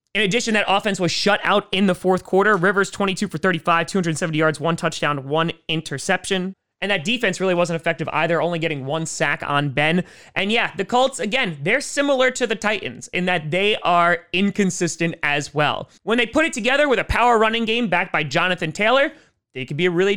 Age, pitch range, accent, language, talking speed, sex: 20-39, 150-200 Hz, American, English, 210 wpm, male